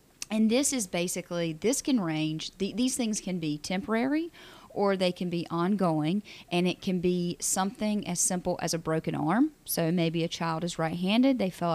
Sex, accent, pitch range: female, American, 165-205 Hz